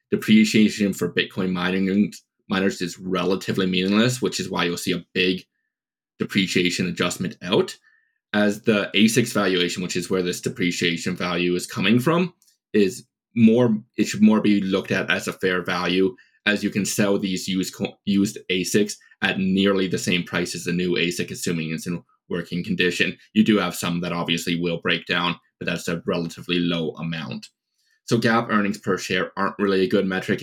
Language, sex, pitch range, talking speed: English, male, 90-105 Hz, 180 wpm